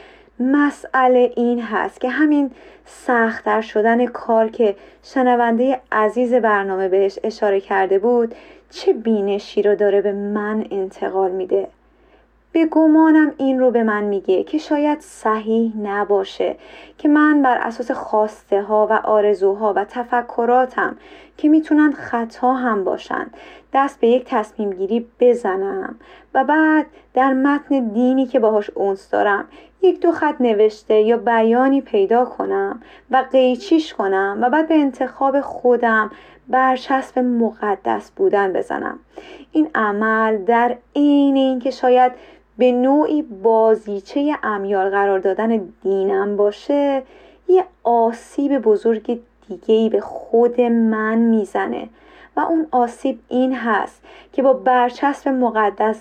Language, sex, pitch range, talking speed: Persian, female, 215-275 Hz, 125 wpm